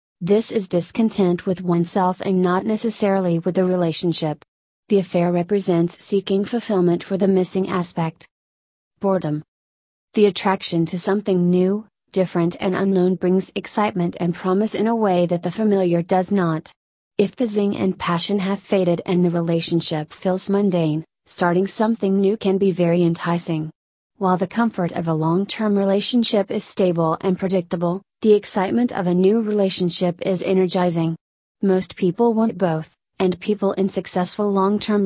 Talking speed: 150 wpm